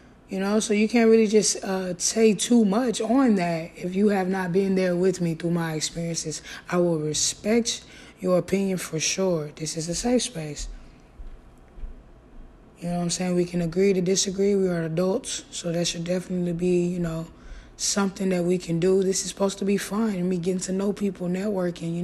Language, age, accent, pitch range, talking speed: English, 20-39, American, 175-215 Hz, 205 wpm